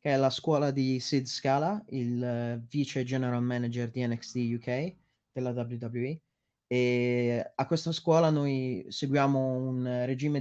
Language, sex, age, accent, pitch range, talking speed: Italian, male, 30-49, native, 125-155 Hz, 135 wpm